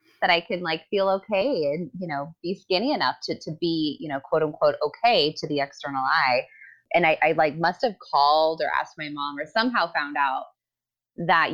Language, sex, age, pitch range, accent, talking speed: English, female, 20-39, 150-190 Hz, American, 210 wpm